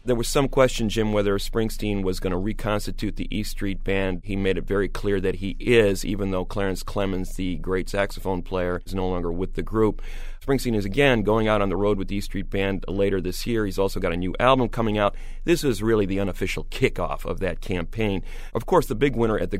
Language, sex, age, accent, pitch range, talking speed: English, male, 30-49, American, 95-120 Hz, 235 wpm